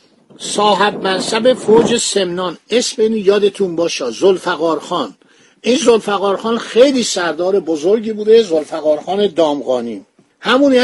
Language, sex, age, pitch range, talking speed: Persian, male, 50-69, 175-225 Hz, 95 wpm